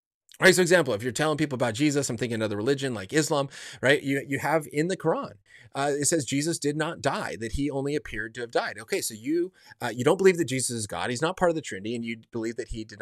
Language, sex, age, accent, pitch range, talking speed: English, male, 30-49, American, 115-160 Hz, 270 wpm